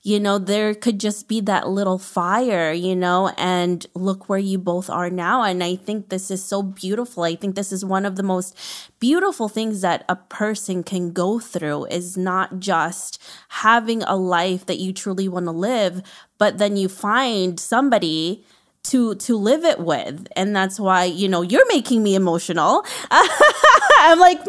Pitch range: 190-275 Hz